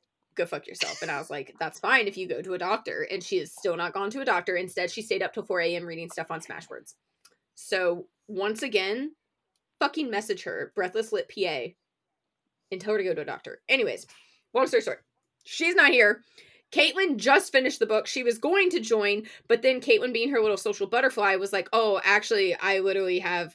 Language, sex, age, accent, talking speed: English, female, 20-39, American, 210 wpm